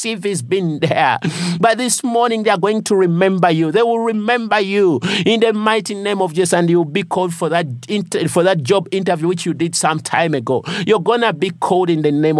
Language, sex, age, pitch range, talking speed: English, male, 50-69, 170-225 Hz, 235 wpm